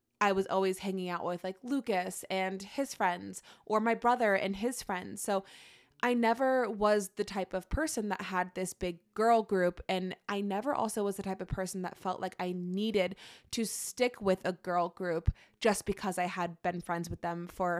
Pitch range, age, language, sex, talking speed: 180-215 Hz, 20-39, English, female, 200 wpm